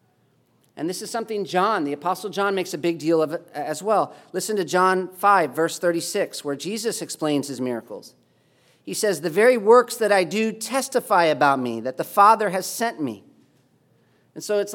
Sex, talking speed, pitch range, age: male, 185 wpm, 165-215 Hz, 40-59